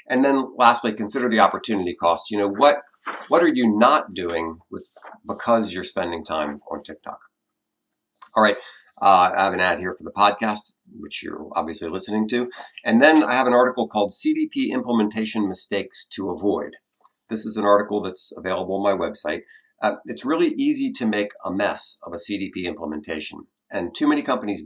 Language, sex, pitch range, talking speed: English, male, 100-125 Hz, 185 wpm